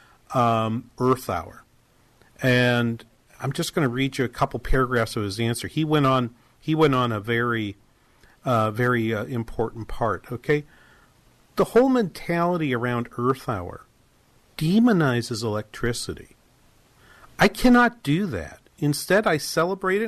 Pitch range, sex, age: 125-185 Hz, male, 50-69